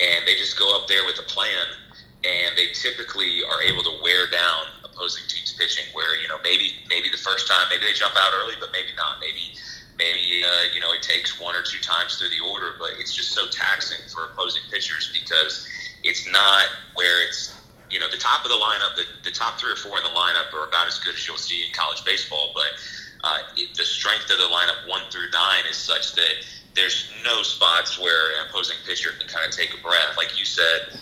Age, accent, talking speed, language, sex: 30-49, American, 230 wpm, English, male